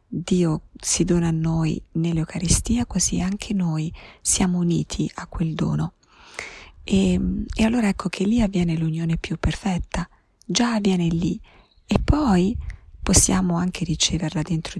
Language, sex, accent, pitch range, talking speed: Italian, female, native, 155-180 Hz, 135 wpm